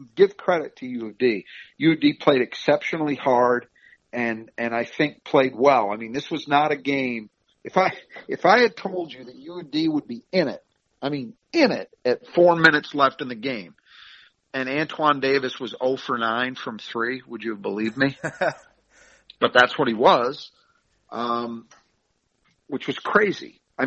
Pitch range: 115-150 Hz